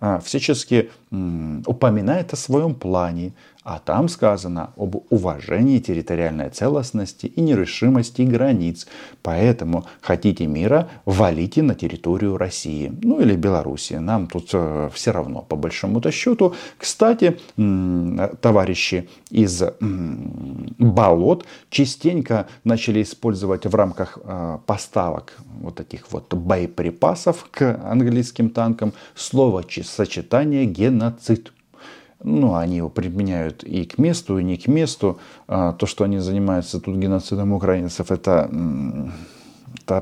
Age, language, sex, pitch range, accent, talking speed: 40-59, Russian, male, 90-120 Hz, native, 110 wpm